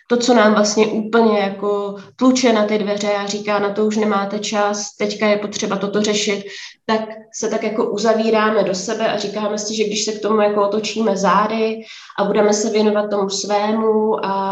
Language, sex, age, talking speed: Czech, female, 20-39, 190 wpm